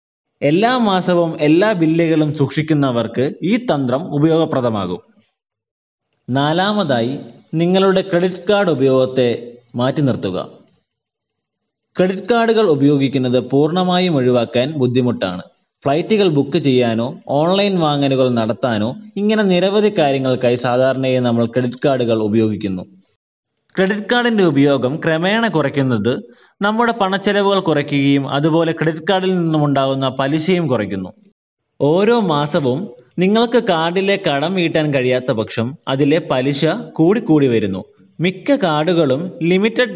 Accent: native